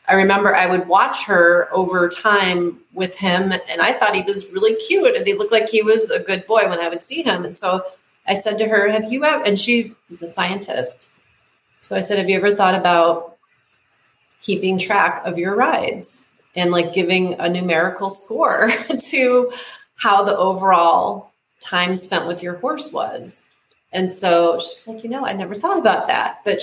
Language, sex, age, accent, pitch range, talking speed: English, female, 30-49, American, 175-220 Hz, 195 wpm